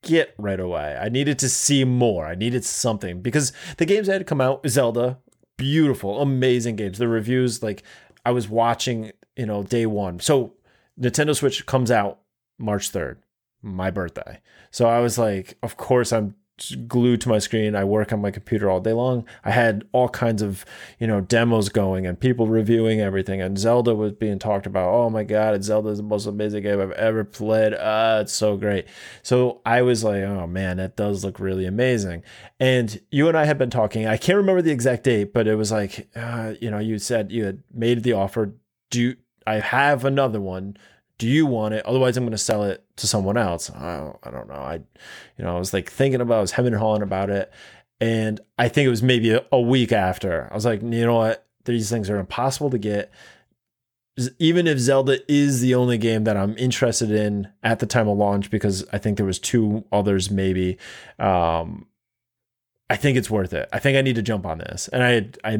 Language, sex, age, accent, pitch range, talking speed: English, male, 20-39, American, 100-125 Hz, 215 wpm